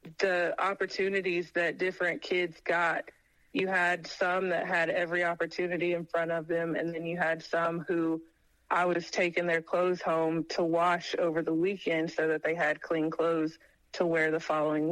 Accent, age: American, 30-49